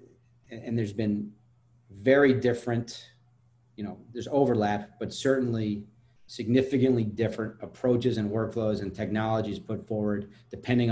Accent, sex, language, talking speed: American, male, English, 115 wpm